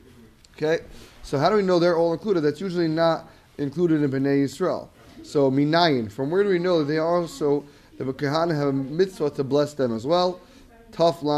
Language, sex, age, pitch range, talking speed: English, male, 20-39, 135-170 Hz, 195 wpm